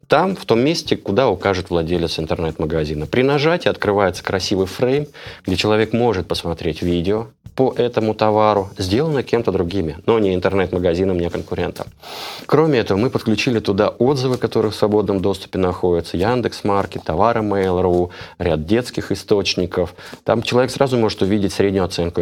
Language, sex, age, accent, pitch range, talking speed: Russian, male, 20-39, native, 90-115 Hz, 145 wpm